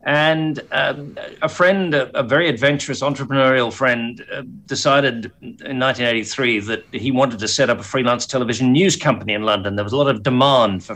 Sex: male